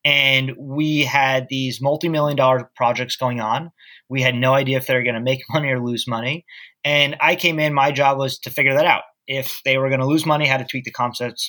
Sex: male